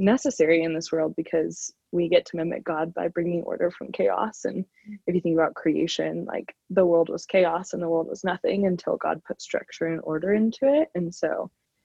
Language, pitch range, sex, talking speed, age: English, 165-200 Hz, female, 210 wpm, 20-39